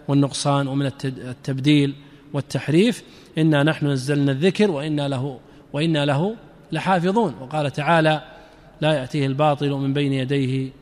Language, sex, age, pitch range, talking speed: Arabic, male, 40-59, 145-180 Hz, 115 wpm